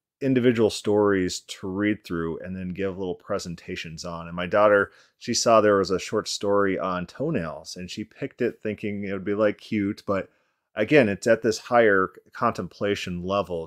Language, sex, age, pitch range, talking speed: English, male, 30-49, 95-110 Hz, 180 wpm